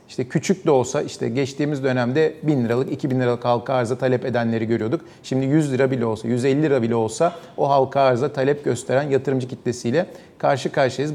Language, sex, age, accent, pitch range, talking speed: Turkish, male, 40-59, native, 130-160 Hz, 195 wpm